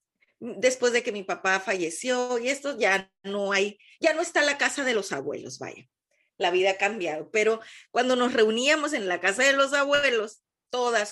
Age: 30-49